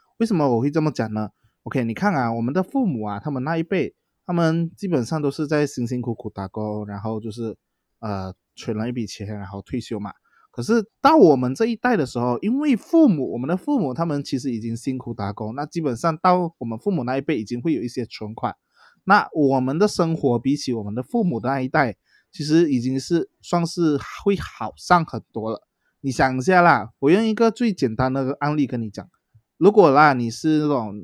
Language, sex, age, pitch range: Chinese, male, 20-39, 115-170 Hz